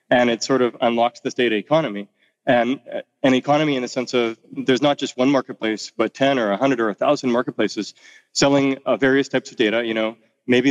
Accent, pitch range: American, 110-130 Hz